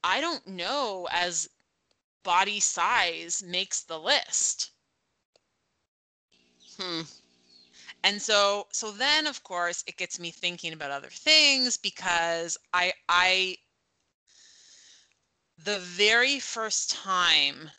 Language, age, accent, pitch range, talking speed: English, 30-49, American, 155-185 Hz, 100 wpm